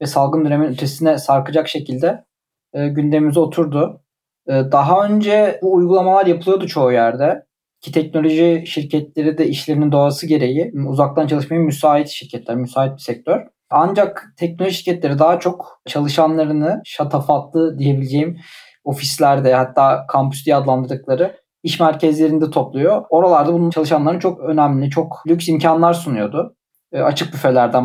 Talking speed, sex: 120 wpm, male